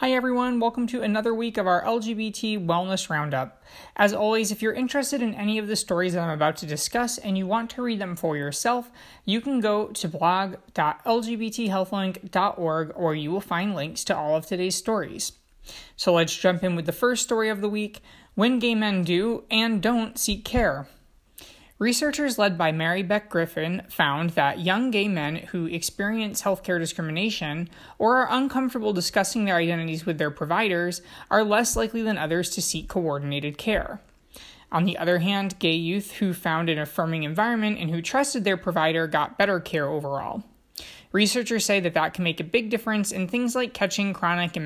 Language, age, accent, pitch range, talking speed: English, 20-39, American, 170-215 Hz, 185 wpm